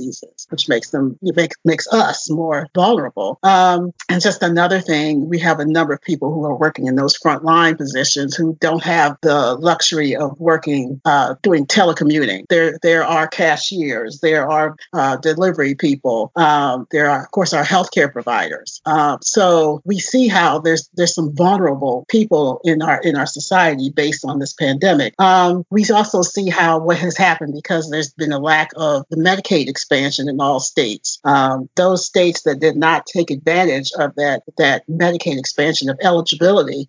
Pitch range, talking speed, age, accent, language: 150-185 Hz, 175 wpm, 50-69, American, English